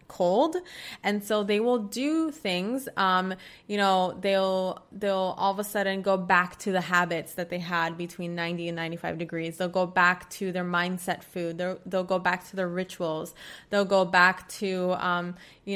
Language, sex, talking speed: English, female, 185 wpm